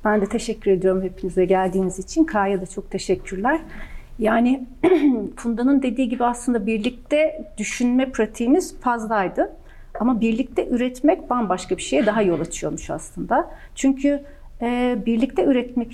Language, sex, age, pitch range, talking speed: Turkish, female, 40-59, 205-280 Hz, 130 wpm